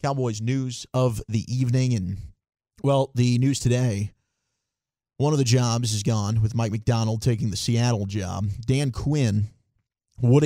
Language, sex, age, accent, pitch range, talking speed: English, male, 30-49, American, 110-125 Hz, 150 wpm